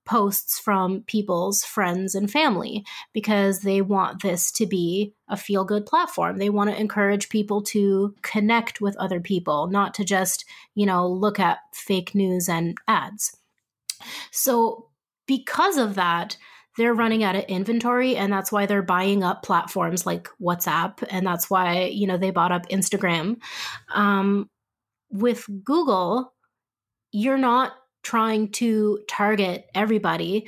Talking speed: 145 wpm